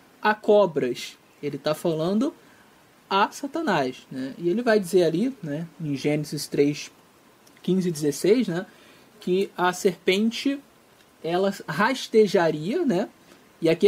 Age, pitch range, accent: 20-39, 165-230 Hz, Brazilian